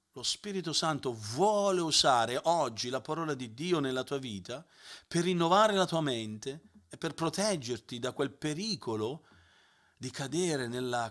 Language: Italian